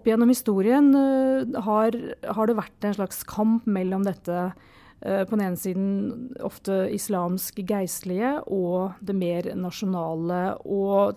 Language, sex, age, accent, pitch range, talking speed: English, female, 40-59, Swedish, 185-230 Hz, 135 wpm